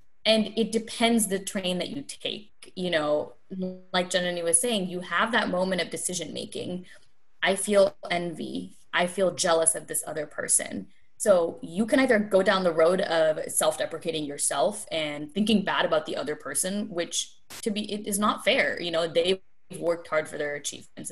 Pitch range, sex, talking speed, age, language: 165-210 Hz, female, 180 wpm, 20-39, English